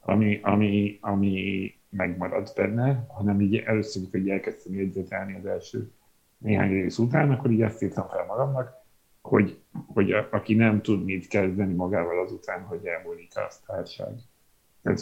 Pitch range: 95-115 Hz